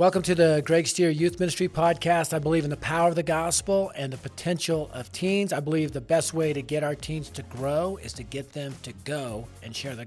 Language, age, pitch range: English, 40-59, 135-165 Hz